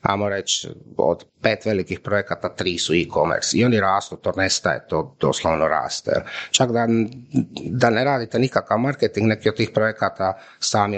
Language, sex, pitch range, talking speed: Croatian, male, 90-115 Hz, 160 wpm